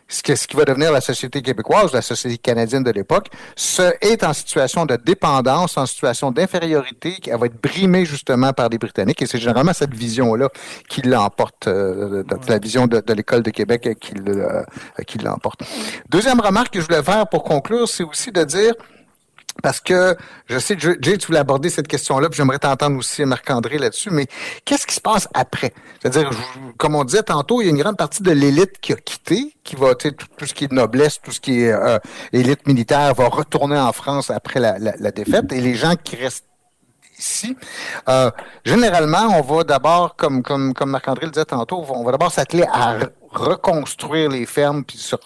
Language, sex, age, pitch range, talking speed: French, male, 60-79, 125-170 Hz, 200 wpm